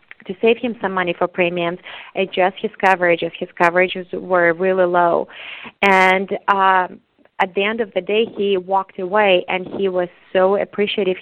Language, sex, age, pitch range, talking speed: English, female, 30-49, 180-200 Hz, 165 wpm